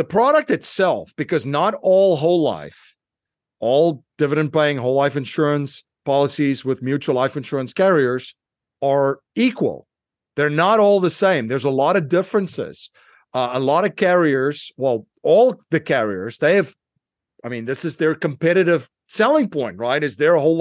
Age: 50-69